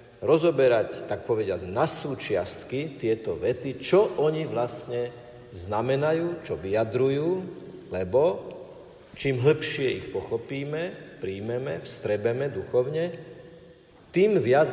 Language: Slovak